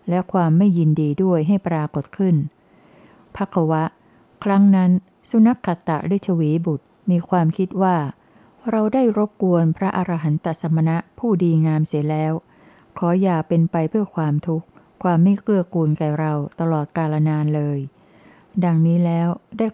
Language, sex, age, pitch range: Thai, female, 60-79, 160-190 Hz